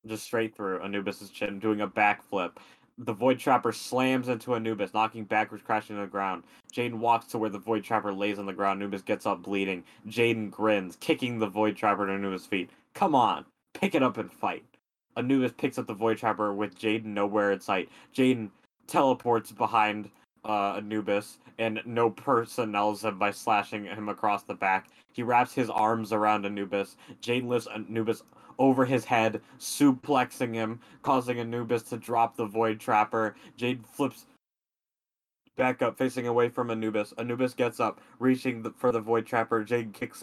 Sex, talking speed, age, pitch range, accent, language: male, 175 wpm, 20-39, 105-120 Hz, American, English